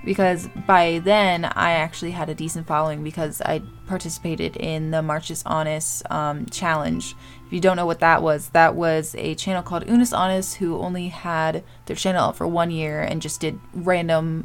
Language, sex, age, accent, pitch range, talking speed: English, female, 20-39, American, 150-185 Hz, 185 wpm